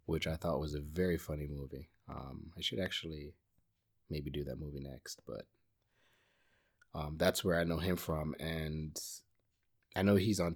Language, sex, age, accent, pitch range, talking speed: English, male, 30-49, American, 80-105 Hz, 170 wpm